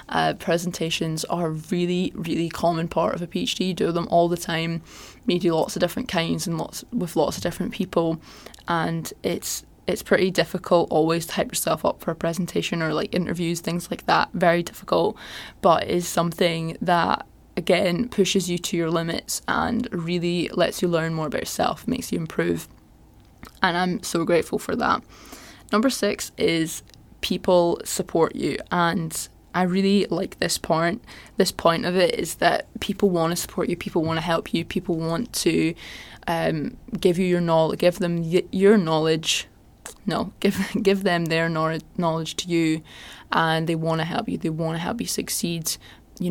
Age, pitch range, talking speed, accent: 10-29, 165-185 Hz, 180 wpm, British